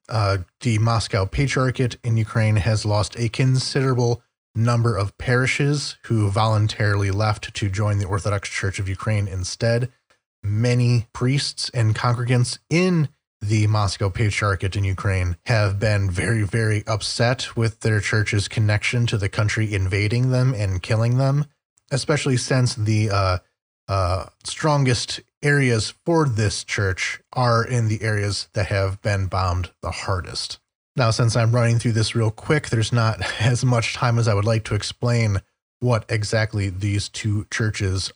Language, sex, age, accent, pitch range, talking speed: English, male, 30-49, American, 100-120 Hz, 150 wpm